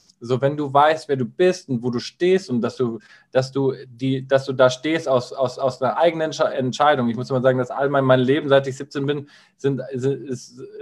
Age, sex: 20-39, male